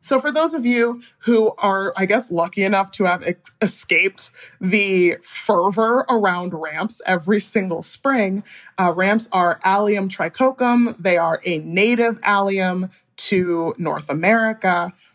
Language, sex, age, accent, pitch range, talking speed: English, male, 30-49, American, 175-230 Hz, 135 wpm